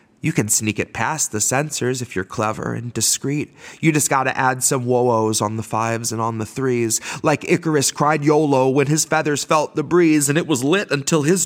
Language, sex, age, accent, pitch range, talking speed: English, male, 30-49, American, 120-165 Hz, 215 wpm